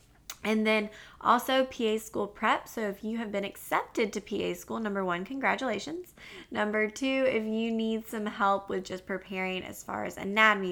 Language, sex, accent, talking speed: English, female, American, 180 wpm